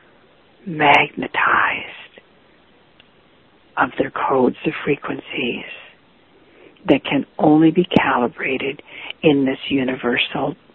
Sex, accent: female, American